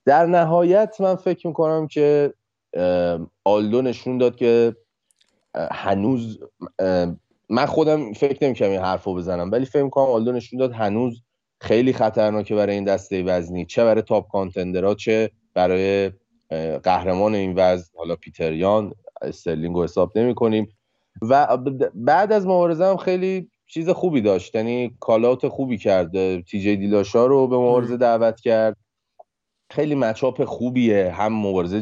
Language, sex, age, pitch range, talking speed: Persian, male, 30-49, 95-125 Hz, 135 wpm